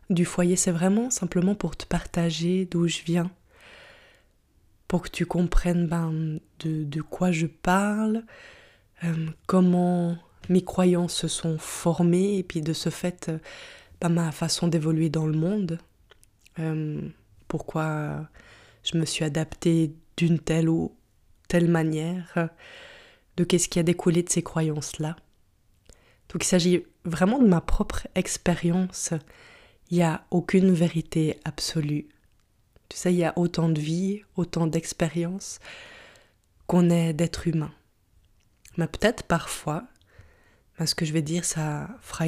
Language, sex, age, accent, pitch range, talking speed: French, female, 20-39, French, 160-180 Hz, 140 wpm